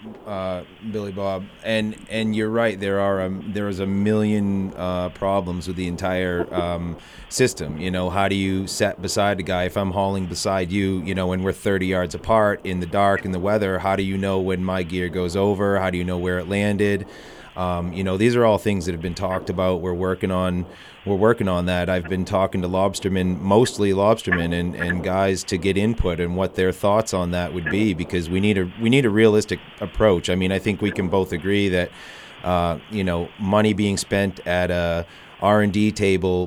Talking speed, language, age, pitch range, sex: 220 wpm, English, 30-49, 90-100 Hz, male